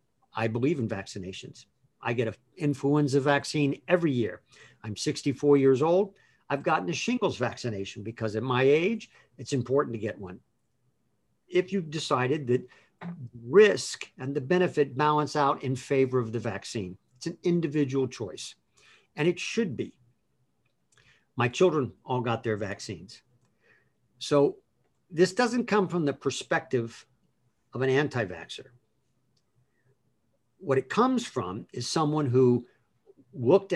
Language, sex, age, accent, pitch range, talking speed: English, male, 50-69, American, 120-145 Hz, 135 wpm